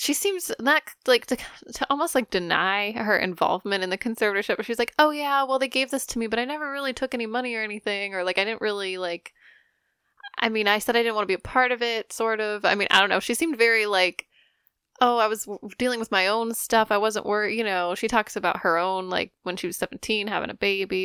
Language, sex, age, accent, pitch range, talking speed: English, female, 10-29, American, 200-255 Hz, 255 wpm